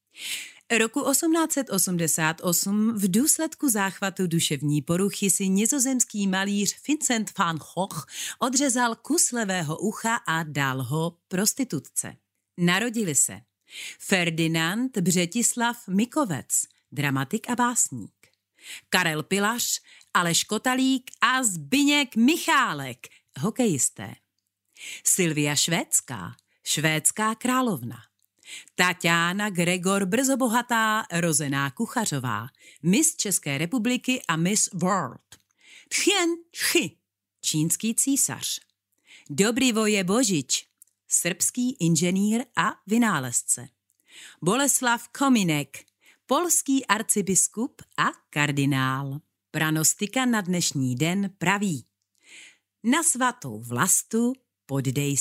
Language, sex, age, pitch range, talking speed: Czech, female, 40-59, 155-240 Hz, 85 wpm